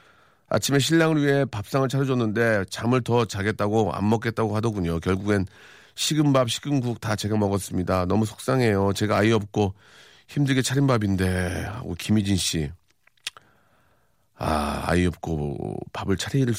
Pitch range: 95-120 Hz